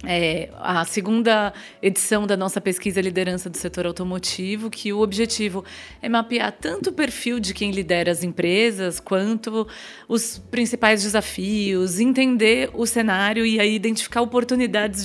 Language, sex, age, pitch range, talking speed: Portuguese, female, 30-49, 190-235 Hz, 140 wpm